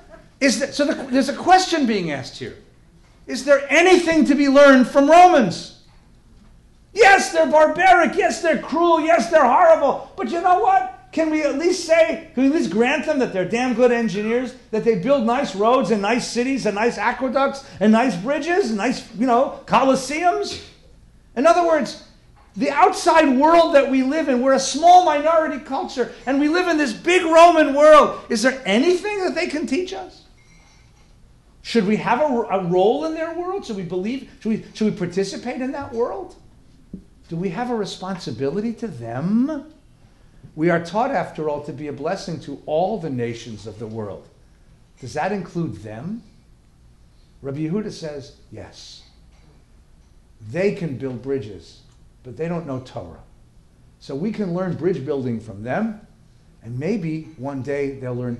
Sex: male